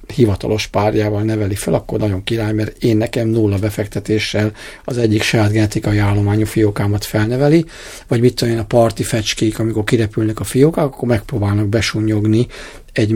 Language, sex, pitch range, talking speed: Hungarian, male, 105-120 Hz, 150 wpm